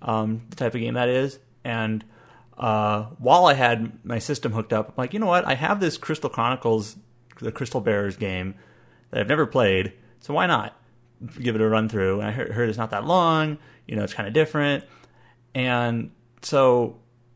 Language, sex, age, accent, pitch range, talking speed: English, male, 30-49, American, 110-135 Hz, 195 wpm